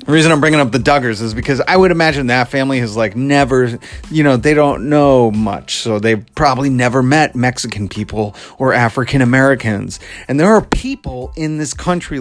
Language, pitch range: English, 115-155 Hz